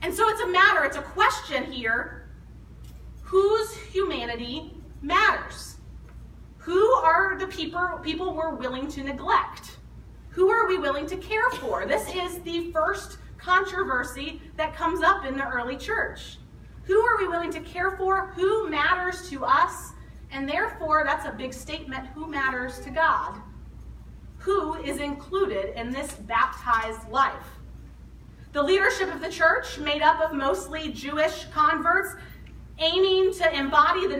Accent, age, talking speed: American, 30-49, 145 wpm